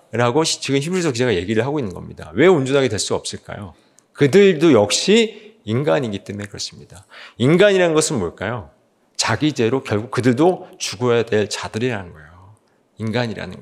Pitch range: 110-160 Hz